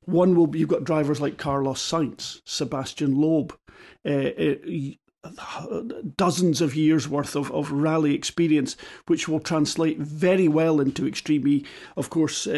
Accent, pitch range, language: British, 150-180 Hz, English